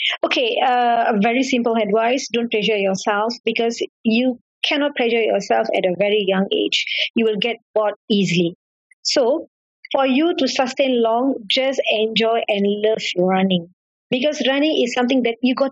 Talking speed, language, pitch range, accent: 160 wpm, English, 200-250 Hz, Indian